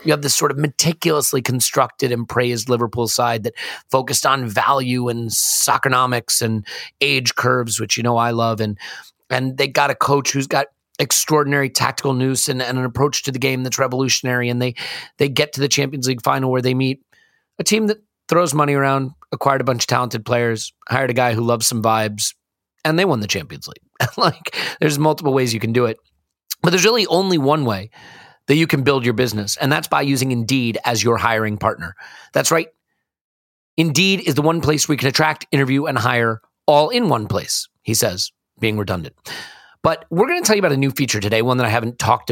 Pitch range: 115-145 Hz